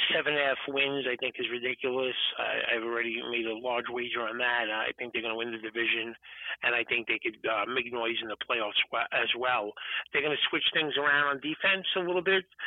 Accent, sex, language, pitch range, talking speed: American, male, English, 135-195 Hz, 225 wpm